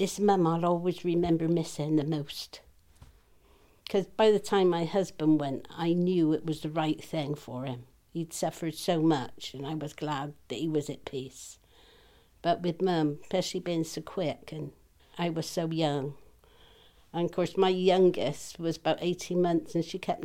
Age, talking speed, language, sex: 60-79, 180 wpm, English, female